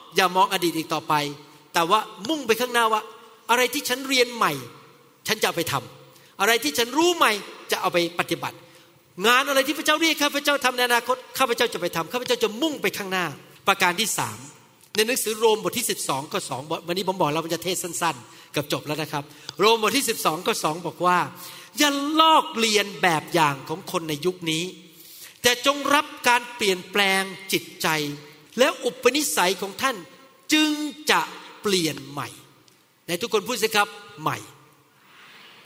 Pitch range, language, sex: 175-245 Hz, Thai, male